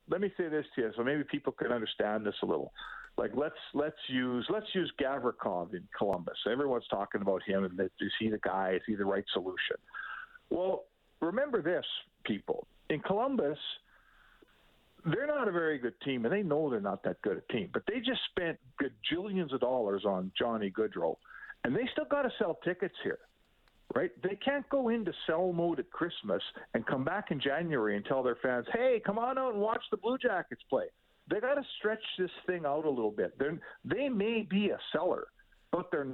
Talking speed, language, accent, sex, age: 205 wpm, English, American, male, 50-69